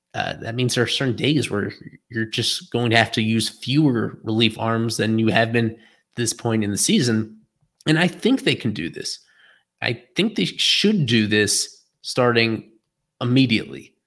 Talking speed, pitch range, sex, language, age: 185 wpm, 110-135 Hz, male, English, 20-39